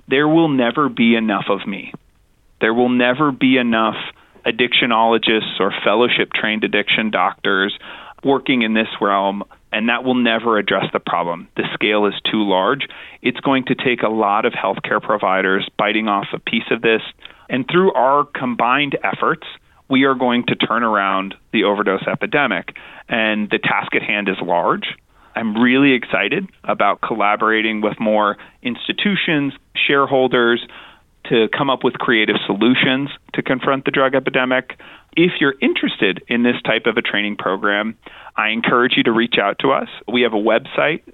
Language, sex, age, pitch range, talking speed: English, male, 30-49, 105-135 Hz, 160 wpm